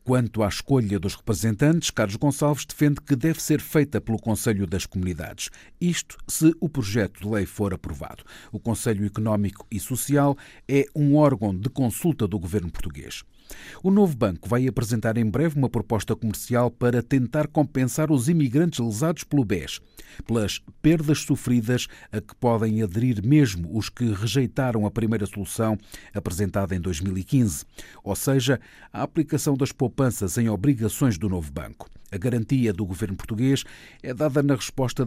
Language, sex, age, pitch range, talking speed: Portuguese, male, 50-69, 105-140 Hz, 155 wpm